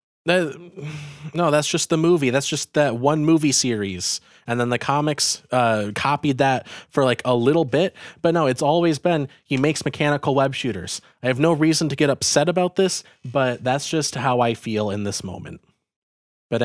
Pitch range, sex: 105-145 Hz, male